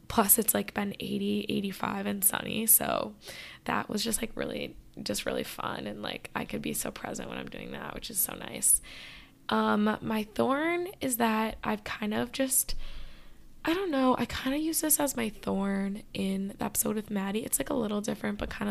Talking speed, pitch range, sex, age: 205 wpm, 200-225 Hz, female, 10-29